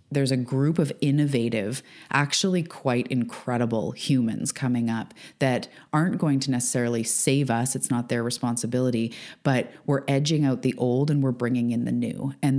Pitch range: 120-135 Hz